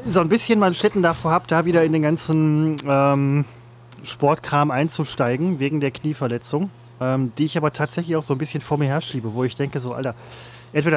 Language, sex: German, male